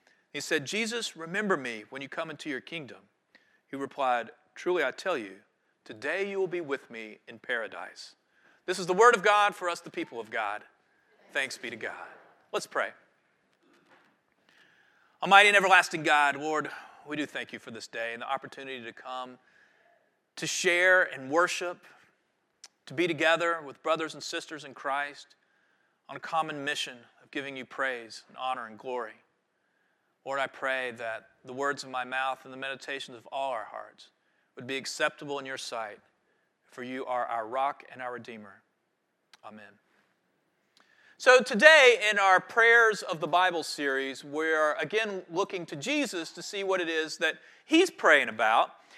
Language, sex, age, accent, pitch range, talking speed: English, male, 40-59, American, 135-205 Hz, 170 wpm